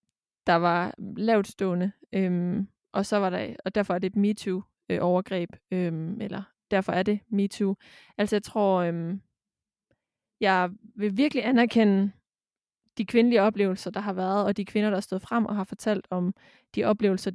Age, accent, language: 20-39, native, Danish